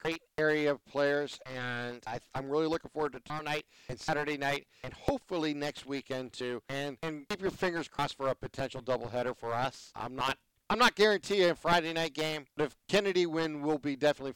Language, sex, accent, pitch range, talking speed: English, male, American, 120-150 Hz, 200 wpm